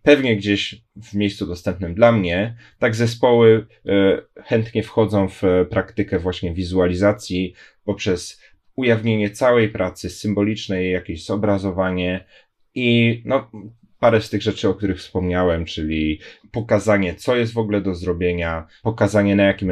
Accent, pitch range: native, 90-110 Hz